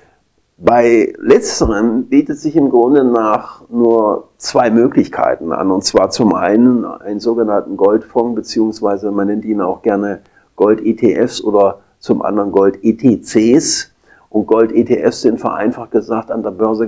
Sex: male